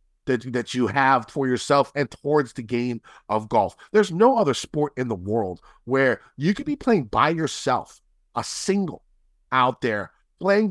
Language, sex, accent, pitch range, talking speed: English, male, American, 125-175 Hz, 175 wpm